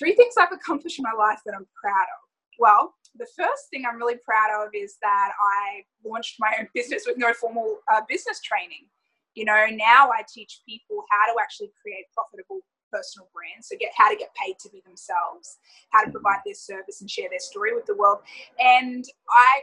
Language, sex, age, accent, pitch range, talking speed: English, female, 20-39, Australian, 215-335 Hz, 205 wpm